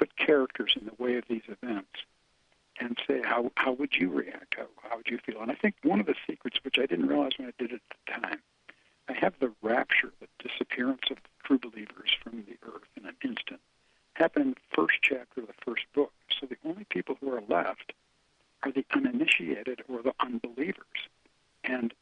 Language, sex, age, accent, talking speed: English, male, 60-79, American, 210 wpm